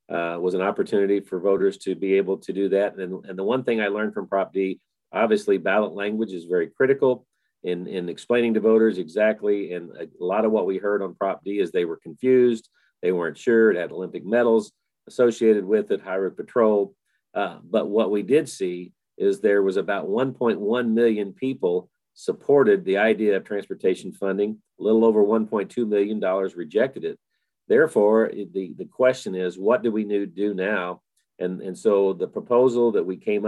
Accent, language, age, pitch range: American, English, 40-59, 95-115 Hz